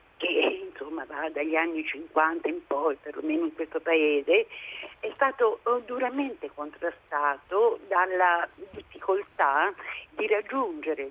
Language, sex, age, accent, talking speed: Italian, female, 50-69, native, 110 wpm